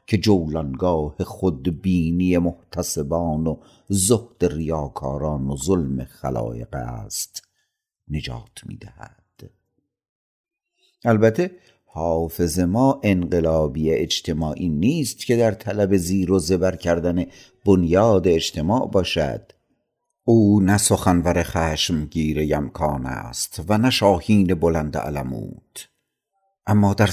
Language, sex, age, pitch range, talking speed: Persian, male, 50-69, 80-105 Hz, 95 wpm